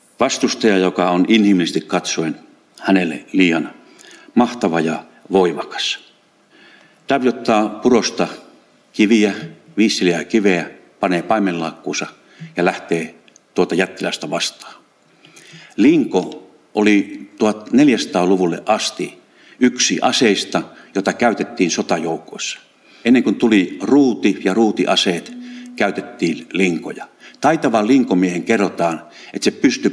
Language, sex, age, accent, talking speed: Finnish, male, 50-69, native, 90 wpm